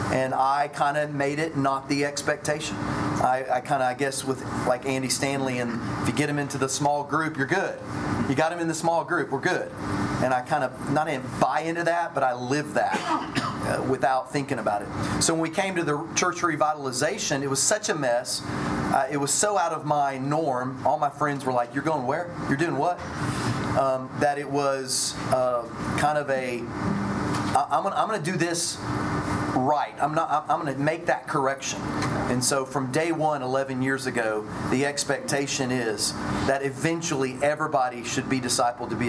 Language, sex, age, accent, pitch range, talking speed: English, male, 30-49, American, 130-150 Hz, 205 wpm